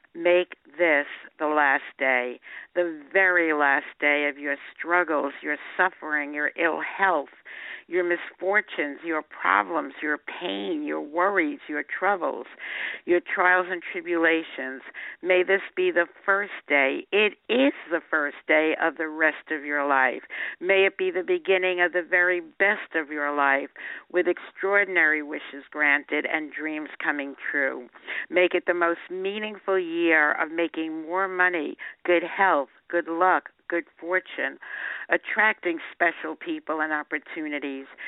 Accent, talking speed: American, 140 wpm